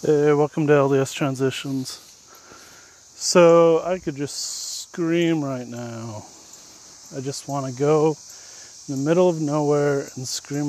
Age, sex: 30-49, male